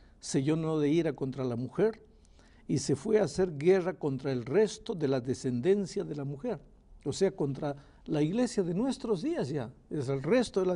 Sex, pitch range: male, 130-185 Hz